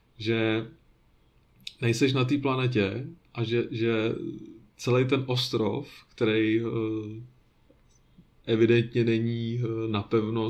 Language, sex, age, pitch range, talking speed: Czech, male, 30-49, 105-120 Hz, 85 wpm